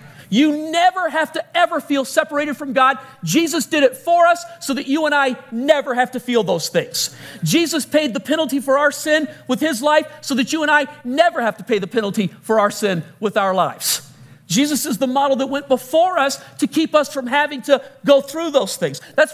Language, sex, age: English, male, 40-59